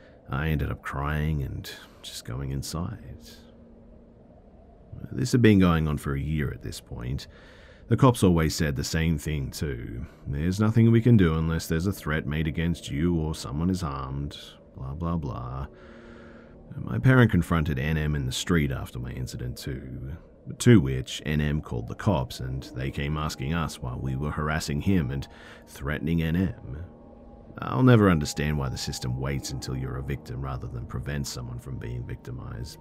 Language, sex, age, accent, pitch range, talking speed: English, male, 40-59, Australian, 70-90 Hz, 170 wpm